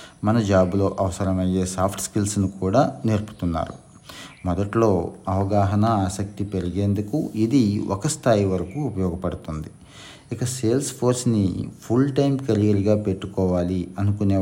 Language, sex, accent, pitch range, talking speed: Telugu, male, native, 90-105 Hz, 100 wpm